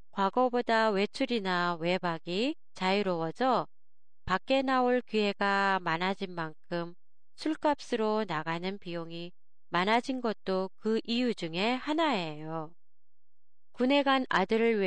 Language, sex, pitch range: Japanese, female, 185-245 Hz